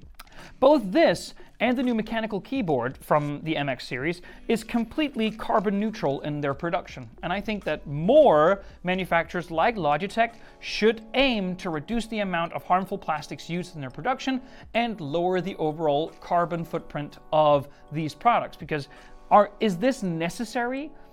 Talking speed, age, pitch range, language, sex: 150 wpm, 30-49, 150-200 Hz, English, male